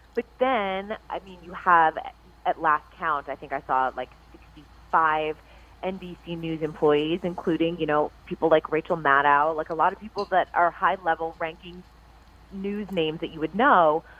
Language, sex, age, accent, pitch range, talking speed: English, female, 30-49, American, 150-200 Hz, 175 wpm